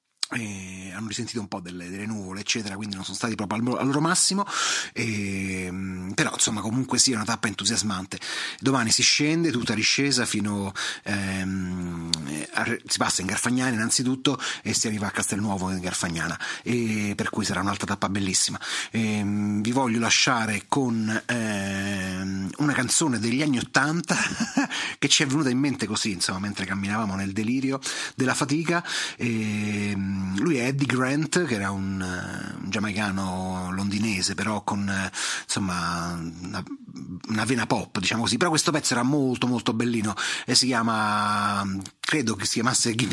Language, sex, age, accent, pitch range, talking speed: Italian, male, 30-49, native, 95-125 Hz, 160 wpm